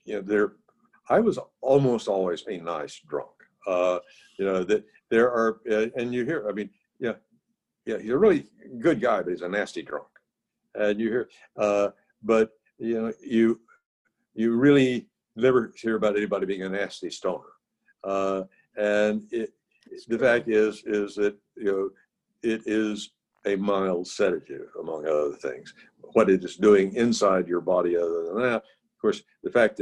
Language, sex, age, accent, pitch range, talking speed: English, male, 60-79, American, 95-115 Hz, 170 wpm